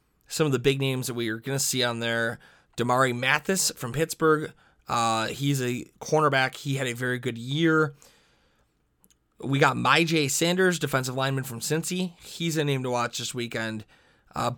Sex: male